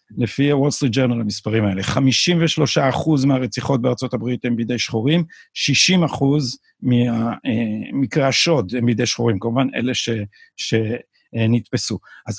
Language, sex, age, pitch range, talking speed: Hebrew, male, 50-69, 125-170 Hz, 125 wpm